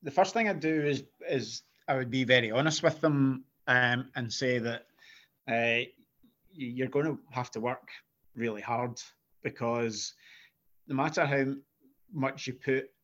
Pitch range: 115-135 Hz